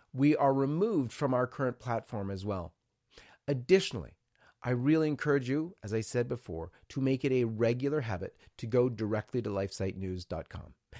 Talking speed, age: 160 wpm, 40-59